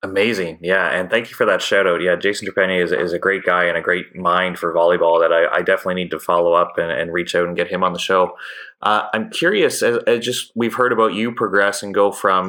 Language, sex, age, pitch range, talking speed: English, male, 20-39, 95-110 Hz, 265 wpm